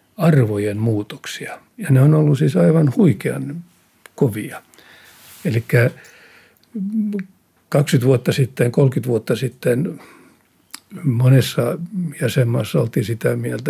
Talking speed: 100 wpm